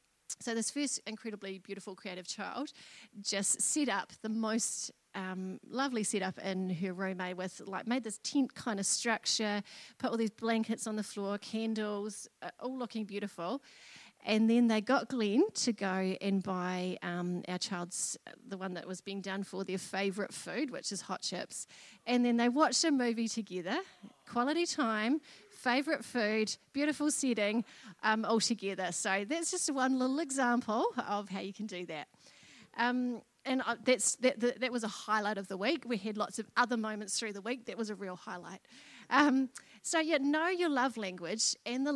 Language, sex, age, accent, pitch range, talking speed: English, female, 30-49, Australian, 190-245 Hz, 185 wpm